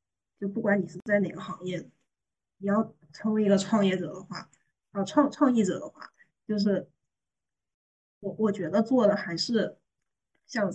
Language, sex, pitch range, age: Chinese, female, 190-235 Hz, 20-39